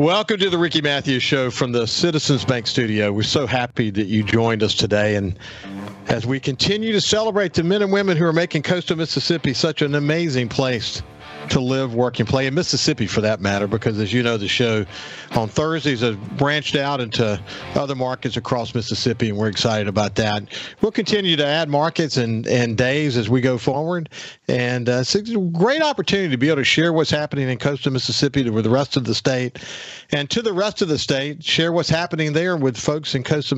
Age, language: 50-69, English